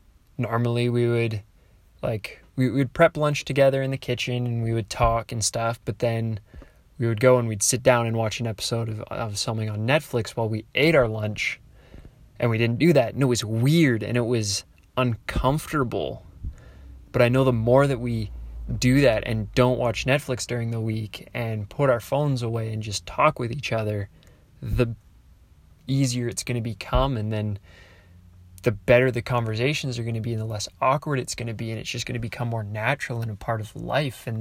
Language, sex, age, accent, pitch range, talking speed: English, male, 20-39, American, 110-130 Hz, 210 wpm